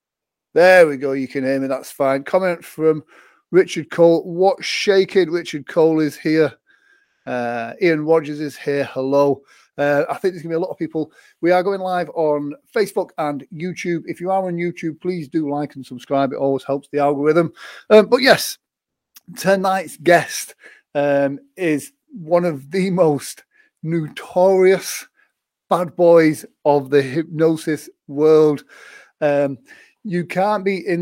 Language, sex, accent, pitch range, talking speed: English, male, British, 145-185 Hz, 160 wpm